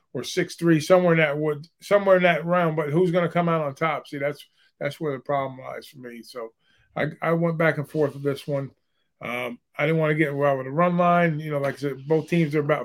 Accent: American